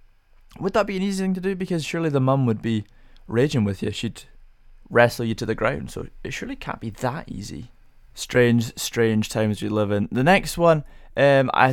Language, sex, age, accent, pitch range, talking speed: English, male, 20-39, British, 105-130 Hz, 210 wpm